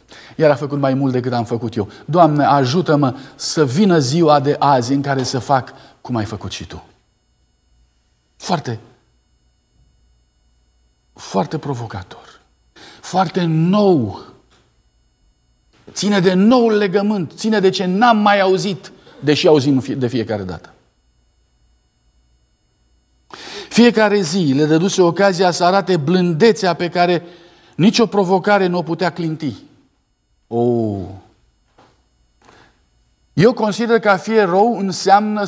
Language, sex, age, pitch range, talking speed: Romanian, male, 50-69, 110-175 Hz, 115 wpm